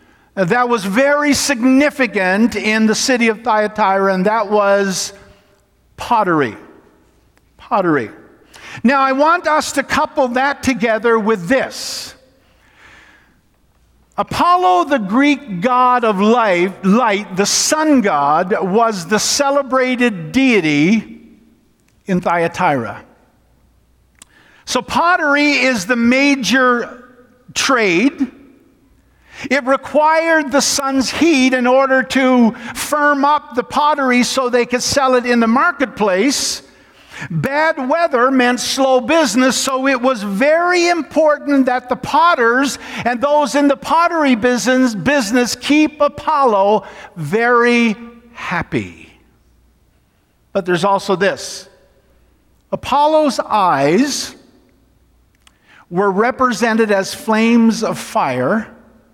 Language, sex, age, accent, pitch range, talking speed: English, male, 50-69, American, 225-285 Hz, 100 wpm